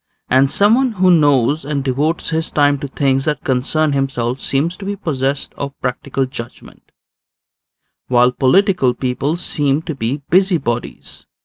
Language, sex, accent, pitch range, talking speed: English, male, Indian, 130-165 Hz, 140 wpm